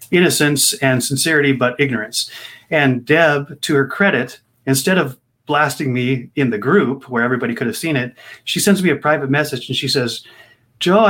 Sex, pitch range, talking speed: male, 120-150 Hz, 180 wpm